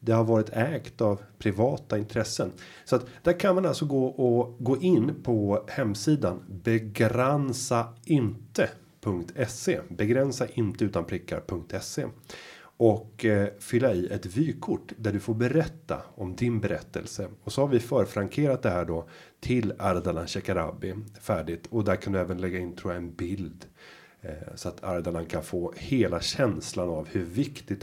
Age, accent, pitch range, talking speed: 30-49, native, 95-125 Hz, 140 wpm